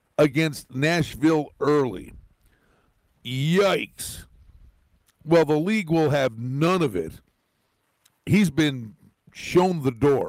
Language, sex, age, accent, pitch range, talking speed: English, male, 50-69, American, 115-155 Hz, 100 wpm